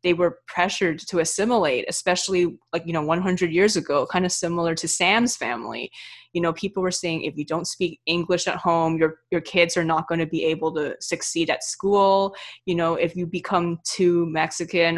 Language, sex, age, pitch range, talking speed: English, female, 20-39, 160-180 Hz, 200 wpm